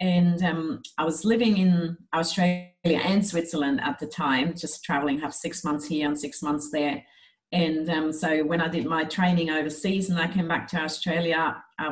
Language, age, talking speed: English, 40-59, 190 wpm